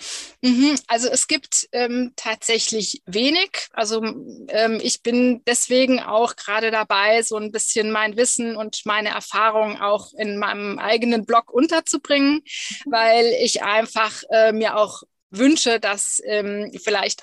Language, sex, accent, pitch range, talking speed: German, female, German, 210-250 Hz, 130 wpm